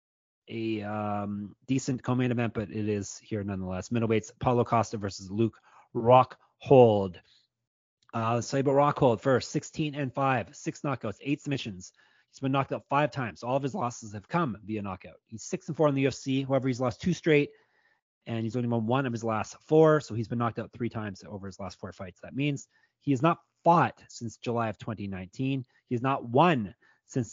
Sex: male